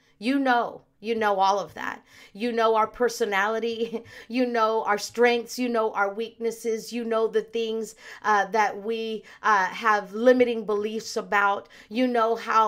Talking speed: 160 wpm